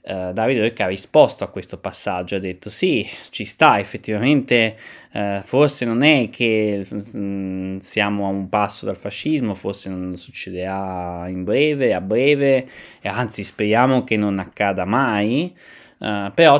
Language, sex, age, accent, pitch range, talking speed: Italian, male, 20-39, native, 90-105 Hz, 150 wpm